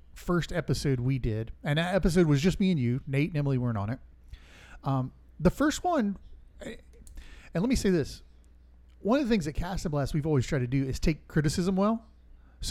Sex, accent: male, American